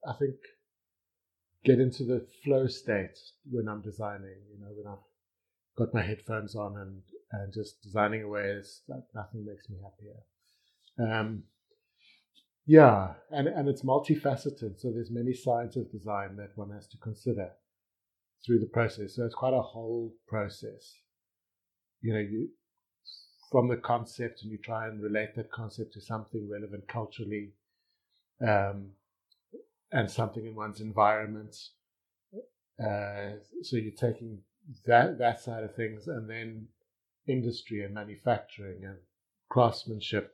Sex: male